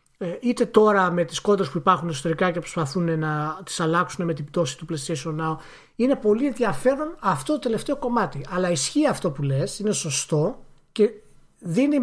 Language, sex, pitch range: Greek, male, 155-220 Hz